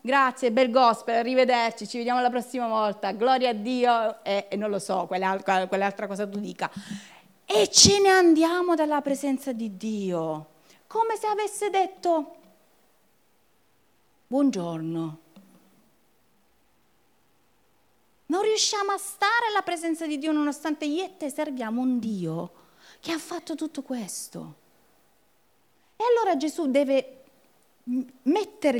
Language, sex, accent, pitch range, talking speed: Italian, female, native, 195-295 Hz, 125 wpm